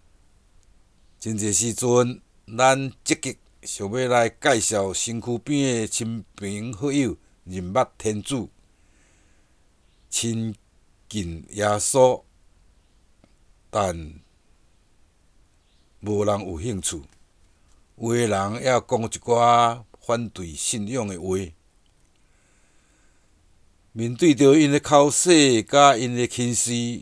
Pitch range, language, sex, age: 90-120 Hz, Chinese, male, 60-79